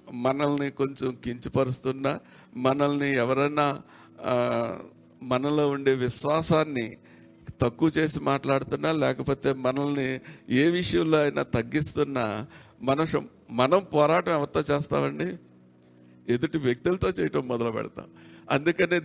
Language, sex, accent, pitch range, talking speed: Telugu, male, native, 115-150 Hz, 80 wpm